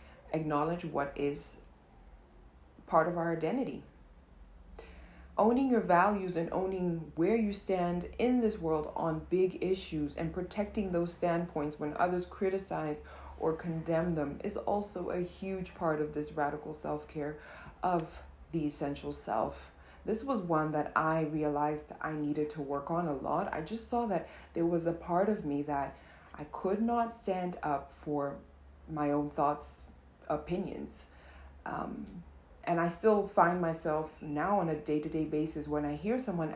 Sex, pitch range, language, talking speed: female, 145-175 Hz, English, 155 wpm